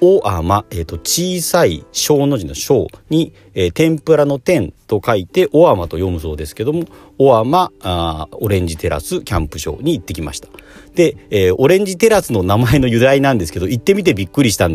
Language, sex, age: Japanese, male, 40-59